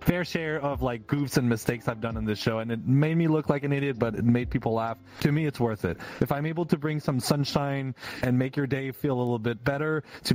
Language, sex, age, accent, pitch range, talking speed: English, male, 30-49, American, 110-145 Hz, 275 wpm